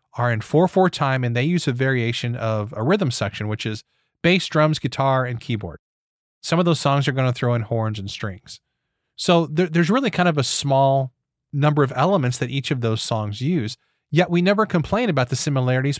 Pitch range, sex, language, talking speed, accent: 120-170 Hz, male, English, 205 wpm, American